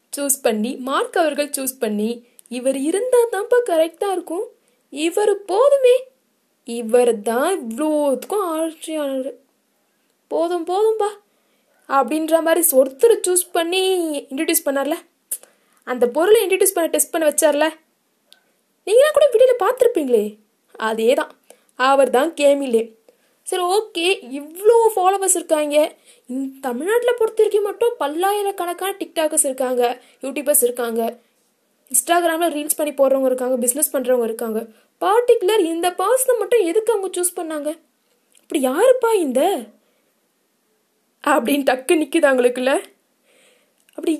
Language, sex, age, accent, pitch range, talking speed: Tamil, female, 20-39, native, 260-380 Hz, 35 wpm